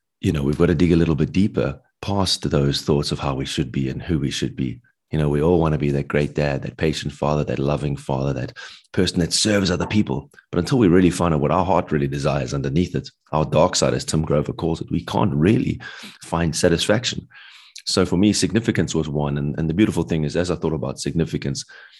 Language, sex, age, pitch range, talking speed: English, male, 30-49, 75-90 Hz, 240 wpm